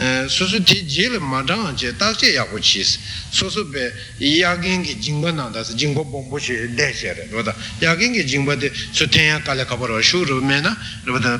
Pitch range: 115-165 Hz